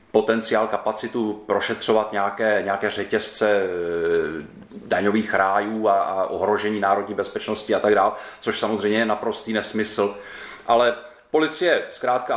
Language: Czech